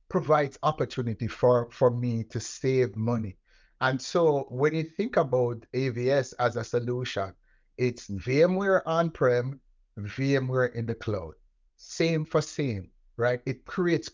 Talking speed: 130 wpm